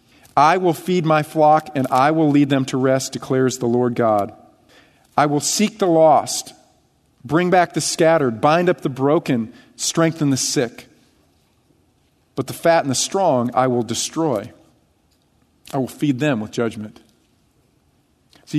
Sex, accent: male, American